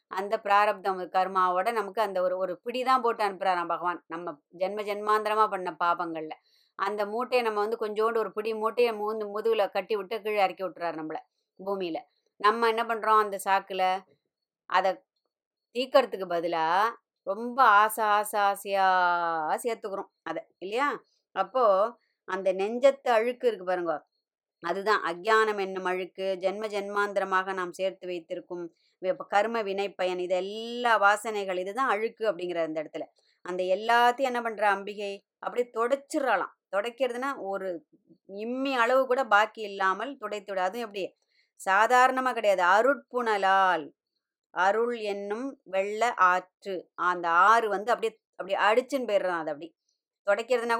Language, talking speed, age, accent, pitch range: Tamil, 120 wpm, 20-39, native, 185-230 Hz